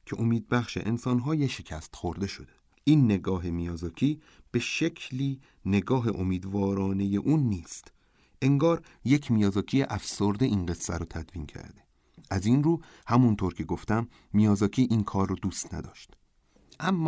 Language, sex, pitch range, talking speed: Persian, male, 90-130 Hz, 135 wpm